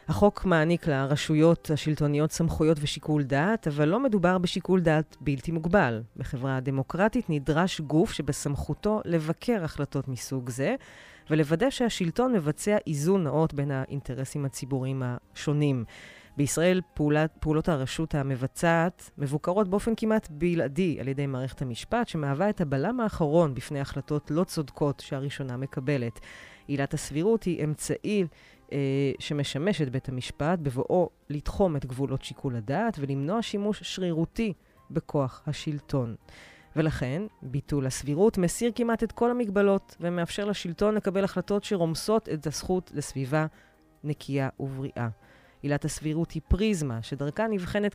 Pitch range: 140-185 Hz